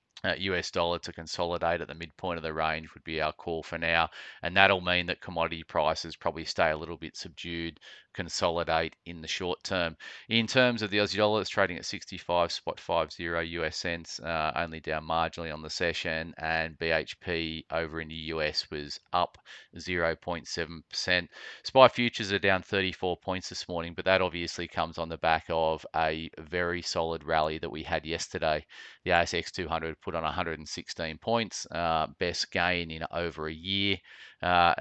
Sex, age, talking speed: male, 30-49, 170 wpm